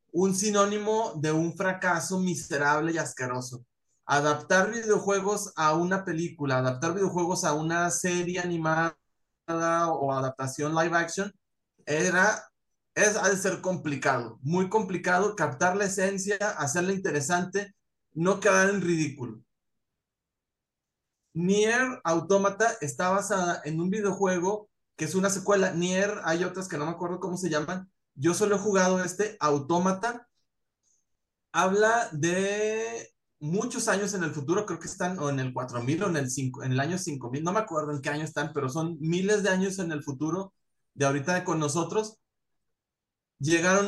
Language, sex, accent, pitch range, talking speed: Spanish, male, Mexican, 150-195 Hz, 150 wpm